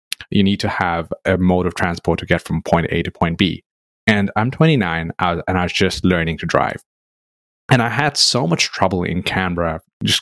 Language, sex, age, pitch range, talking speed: English, male, 30-49, 85-105 Hz, 205 wpm